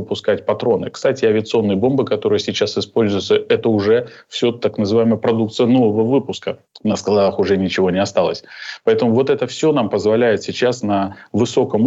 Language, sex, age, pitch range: Russian, male, 20-39, 100-120 Hz